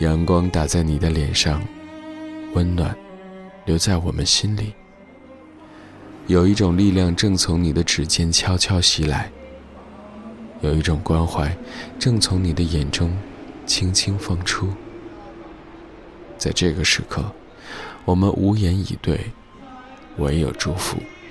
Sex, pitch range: male, 80-110 Hz